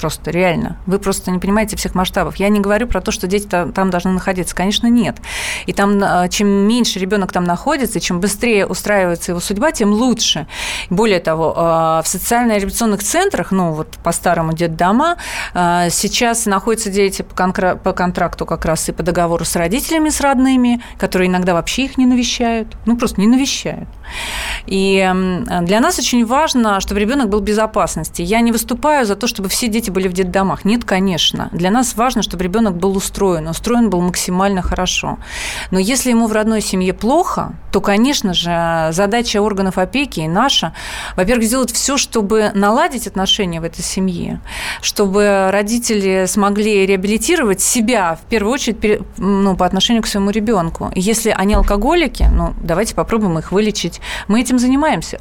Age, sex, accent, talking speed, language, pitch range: 30-49, female, native, 165 wpm, Russian, 185-230 Hz